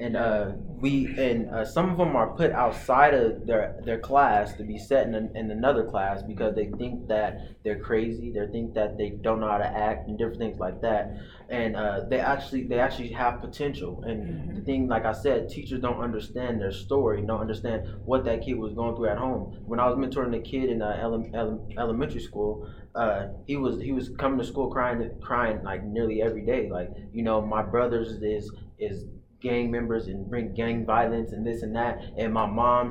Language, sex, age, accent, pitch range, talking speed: English, male, 20-39, American, 110-125 Hz, 215 wpm